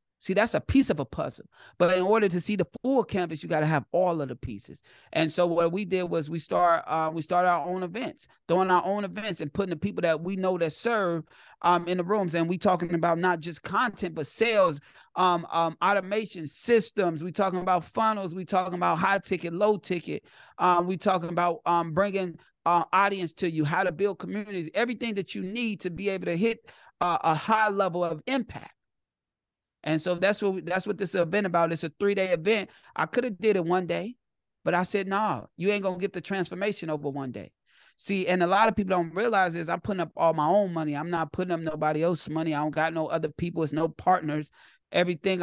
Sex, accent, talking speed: male, American, 230 wpm